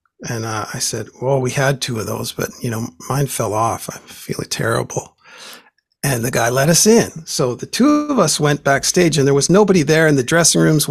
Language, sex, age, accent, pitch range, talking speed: English, male, 50-69, American, 125-155 Hz, 230 wpm